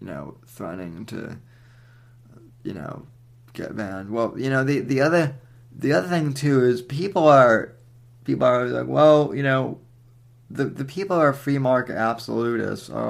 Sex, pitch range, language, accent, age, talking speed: male, 115-130 Hz, English, American, 20-39, 165 wpm